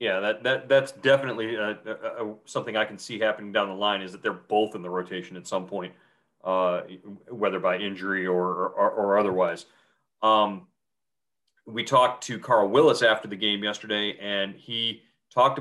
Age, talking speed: 30-49, 175 wpm